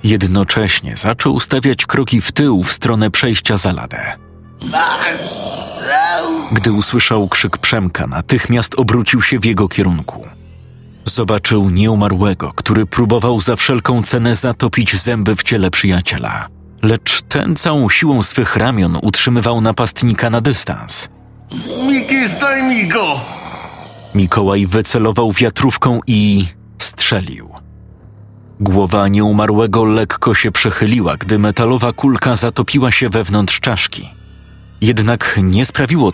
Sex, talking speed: male, 105 wpm